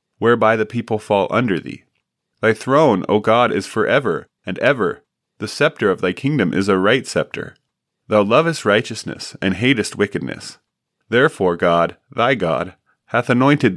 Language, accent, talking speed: English, American, 155 wpm